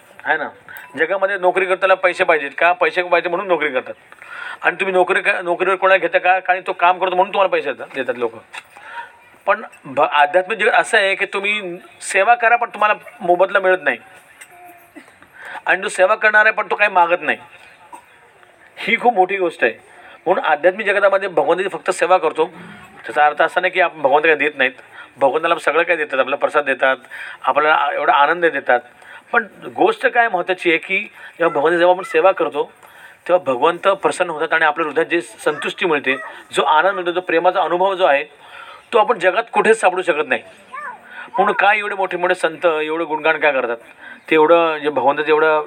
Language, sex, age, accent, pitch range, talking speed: Marathi, male, 40-59, native, 165-210 Hz, 185 wpm